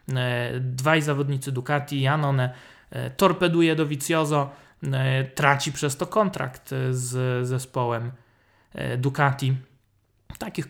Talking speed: 85 wpm